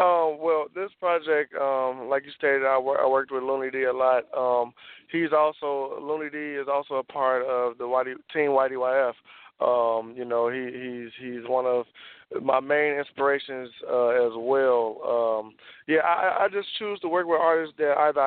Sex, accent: male, American